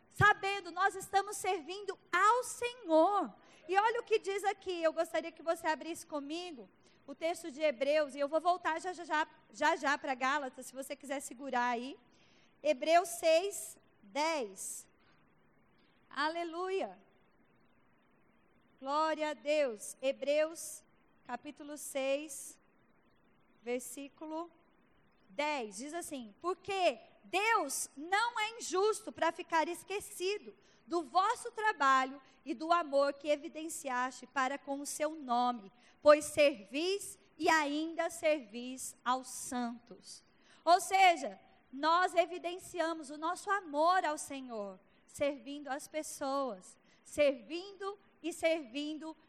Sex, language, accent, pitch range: female, Portuguese, Brazilian, 275-345 Hz